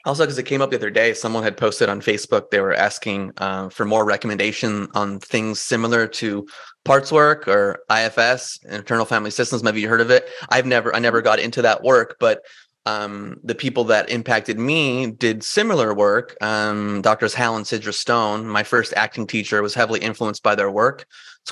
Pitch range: 105-125 Hz